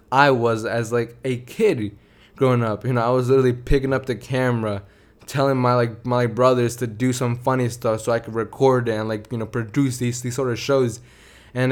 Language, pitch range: English, 115-135 Hz